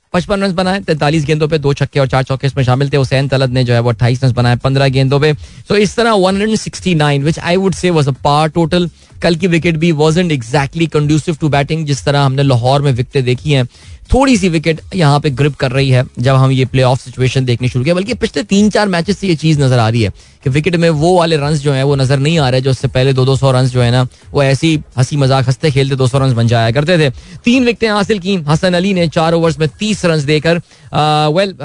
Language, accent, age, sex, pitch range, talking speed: Hindi, native, 20-39, male, 130-165 Hz, 255 wpm